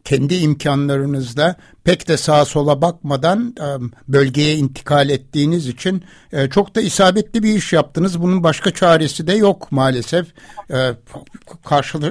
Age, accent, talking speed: 60-79, native, 120 wpm